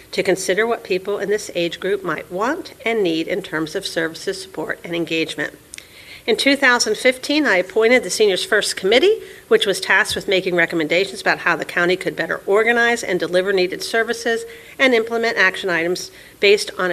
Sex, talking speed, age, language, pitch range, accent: female, 175 wpm, 50-69, English, 180-230 Hz, American